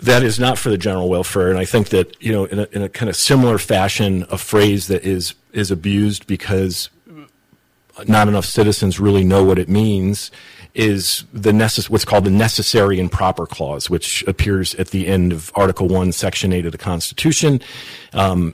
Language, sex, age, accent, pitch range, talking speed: English, male, 40-59, American, 95-110 Hz, 195 wpm